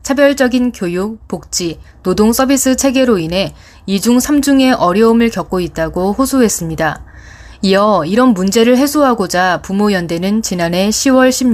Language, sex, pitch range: Korean, female, 175-240 Hz